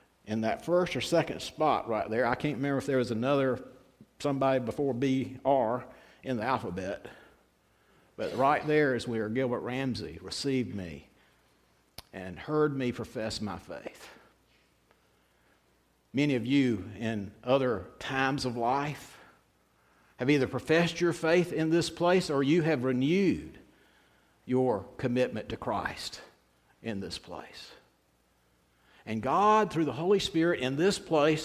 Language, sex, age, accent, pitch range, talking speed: English, male, 50-69, American, 110-160 Hz, 135 wpm